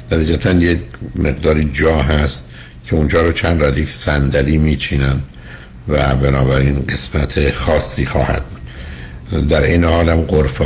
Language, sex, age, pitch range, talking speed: Persian, male, 60-79, 65-80 Hz, 125 wpm